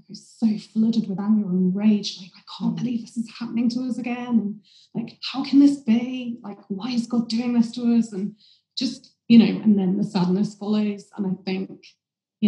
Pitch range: 185-220 Hz